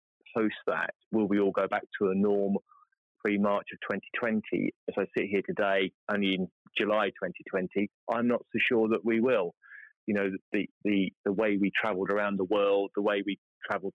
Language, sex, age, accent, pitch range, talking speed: English, male, 30-49, British, 95-105 Hz, 190 wpm